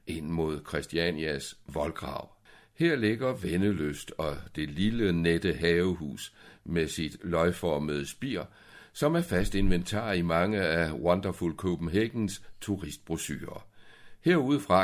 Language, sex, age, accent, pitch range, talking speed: Danish, male, 60-79, native, 80-105 Hz, 110 wpm